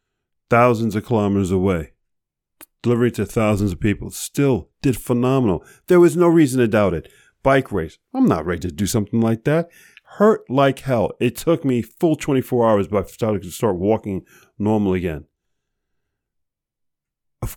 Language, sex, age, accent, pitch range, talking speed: English, male, 40-59, American, 100-140 Hz, 160 wpm